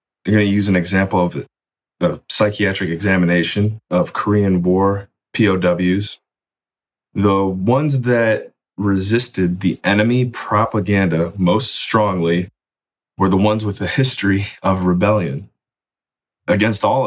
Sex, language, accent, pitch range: male, English, American, 90-105 Hz